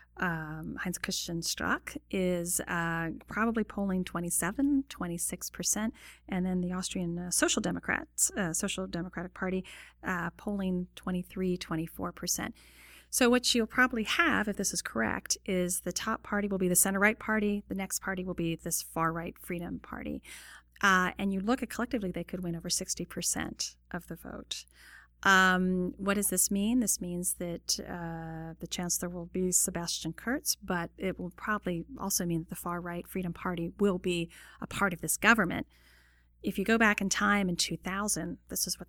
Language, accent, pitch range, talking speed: English, American, 170-200 Hz, 175 wpm